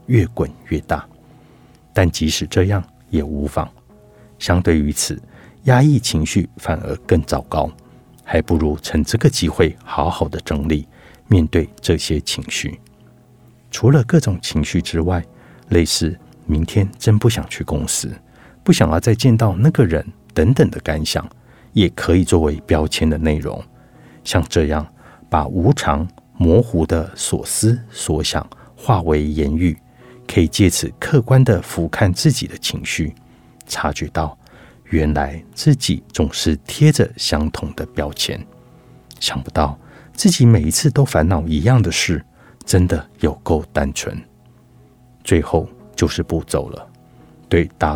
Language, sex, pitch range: Chinese, male, 80-120 Hz